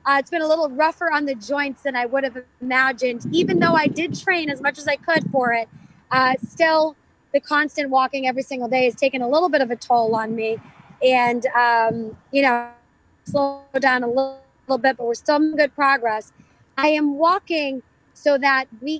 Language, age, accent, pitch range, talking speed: English, 20-39, American, 245-285 Hz, 210 wpm